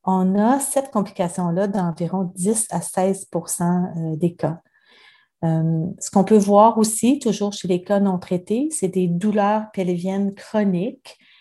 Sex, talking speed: female, 140 wpm